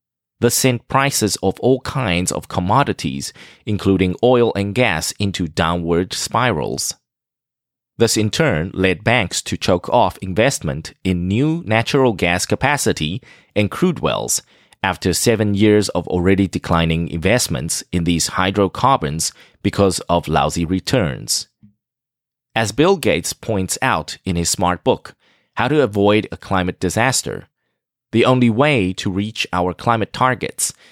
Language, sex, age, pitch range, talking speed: English, male, 30-49, 90-120 Hz, 135 wpm